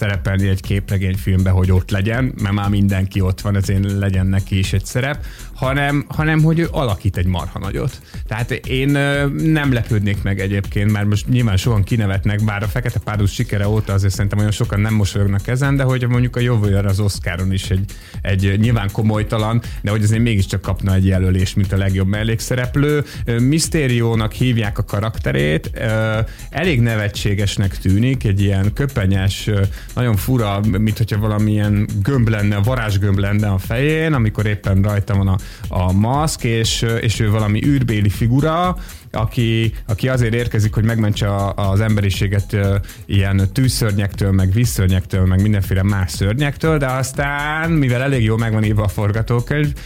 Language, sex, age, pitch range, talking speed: Hungarian, male, 30-49, 100-125 Hz, 160 wpm